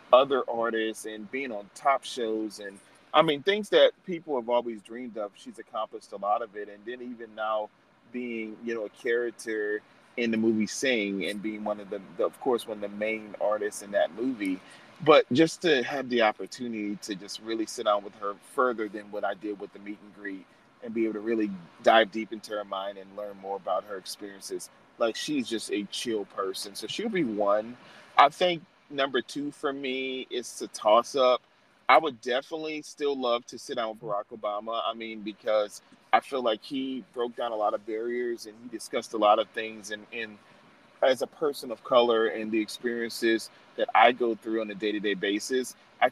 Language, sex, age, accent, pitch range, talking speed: English, male, 30-49, American, 105-120 Hz, 210 wpm